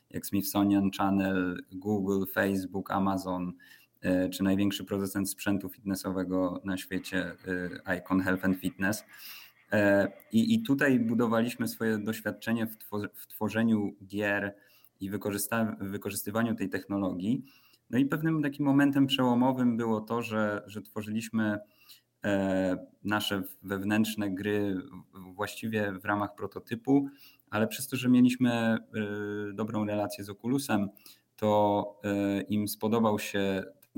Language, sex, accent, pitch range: Polish, male, native, 100-110 Hz